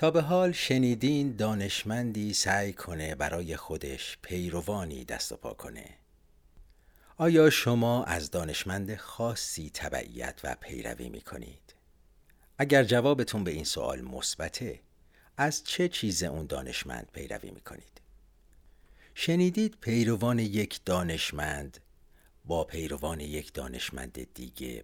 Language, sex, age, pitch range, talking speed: Persian, male, 50-69, 75-110 Hz, 105 wpm